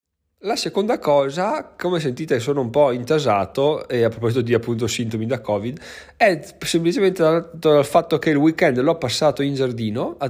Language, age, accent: Italian, 20-39, native